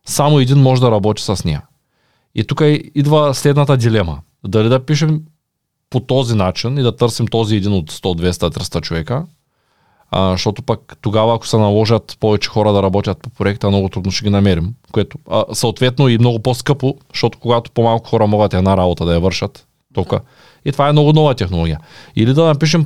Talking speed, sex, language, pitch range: 185 wpm, male, Bulgarian, 105-145 Hz